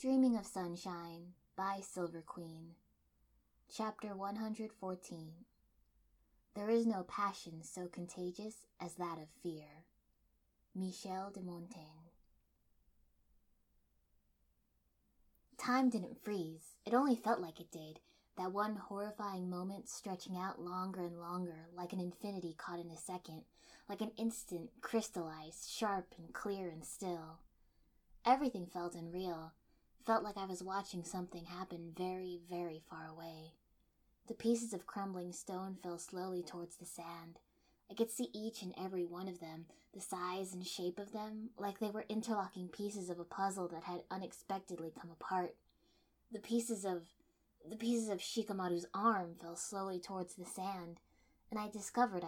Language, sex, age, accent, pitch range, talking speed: English, female, 10-29, American, 170-205 Hz, 140 wpm